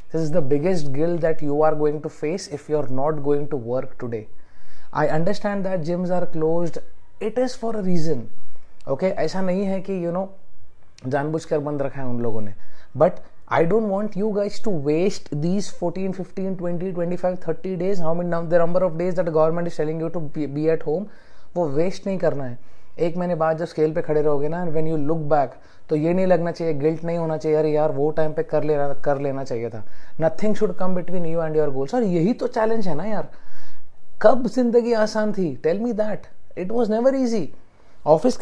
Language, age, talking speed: English, 30-49, 145 wpm